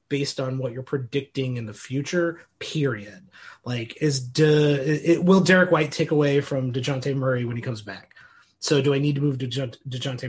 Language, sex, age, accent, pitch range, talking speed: English, male, 30-49, American, 130-170 Hz, 185 wpm